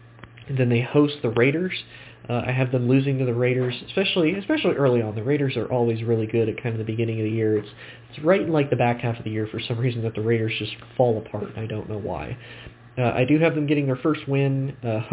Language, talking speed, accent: English, 265 wpm, American